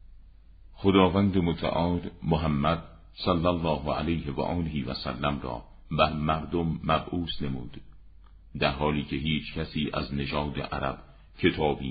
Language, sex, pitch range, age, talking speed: Persian, male, 75-90 Hz, 50-69, 120 wpm